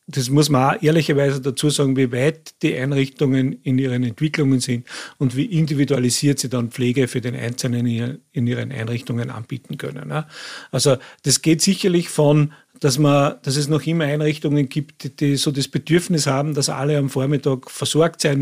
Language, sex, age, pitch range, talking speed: German, male, 40-59, 130-150 Hz, 175 wpm